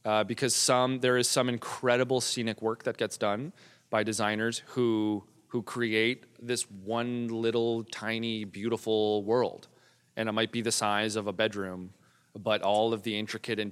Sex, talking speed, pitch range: male, 165 wpm, 105-120 Hz